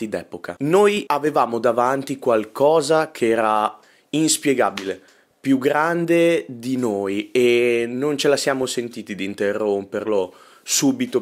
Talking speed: 110 wpm